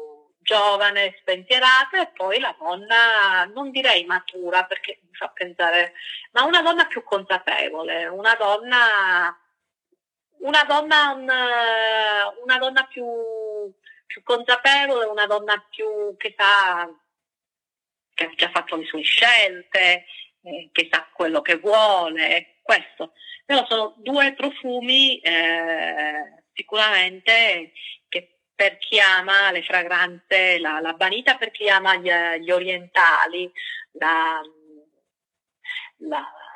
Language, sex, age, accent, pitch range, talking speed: Italian, female, 30-49, native, 175-235 Hz, 115 wpm